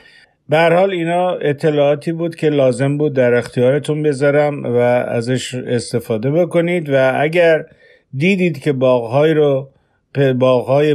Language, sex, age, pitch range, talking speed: Persian, male, 50-69, 125-160 Hz, 105 wpm